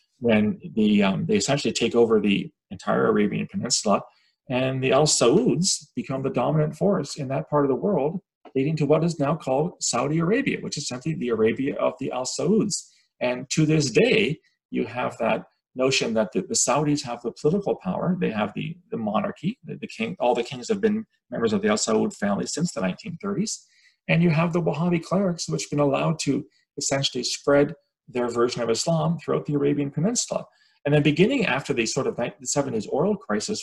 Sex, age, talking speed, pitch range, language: male, 40-59, 200 wpm, 140-200 Hz, English